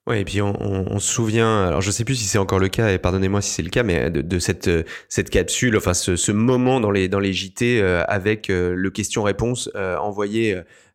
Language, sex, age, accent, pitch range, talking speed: French, male, 30-49, French, 100-130 Hz, 230 wpm